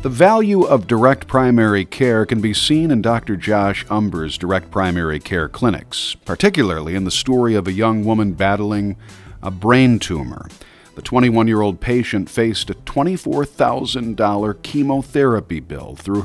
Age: 50-69